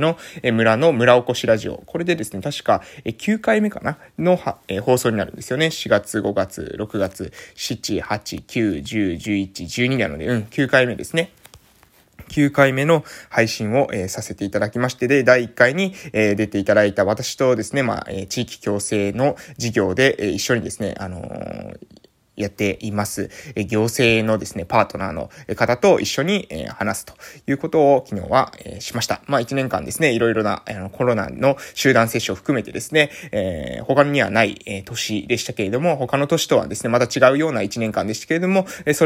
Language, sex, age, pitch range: Japanese, male, 20-39, 110-145 Hz